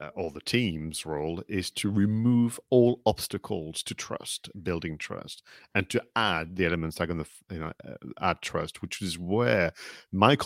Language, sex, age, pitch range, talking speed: English, male, 40-59, 85-105 Hz, 160 wpm